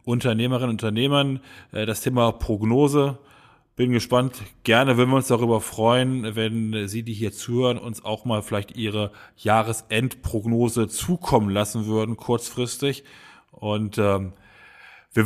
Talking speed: 125 wpm